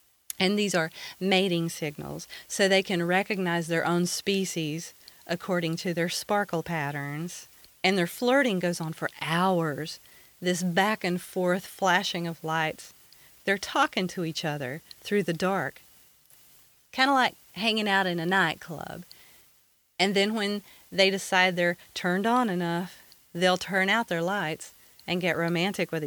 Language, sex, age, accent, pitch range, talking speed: English, female, 40-59, American, 170-200 Hz, 145 wpm